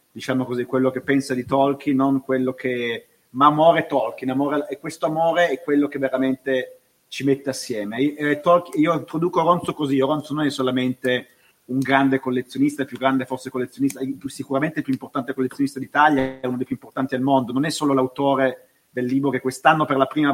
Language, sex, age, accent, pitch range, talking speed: Italian, male, 30-49, native, 130-145 Hz, 200 wpm